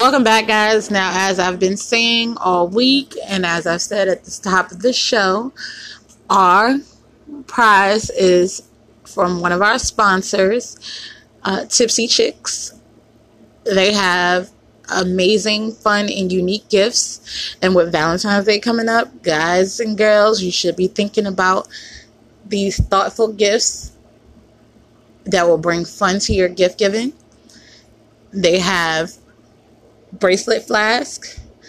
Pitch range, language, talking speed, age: 180-215 Hz, English, 125 wpm, 20-39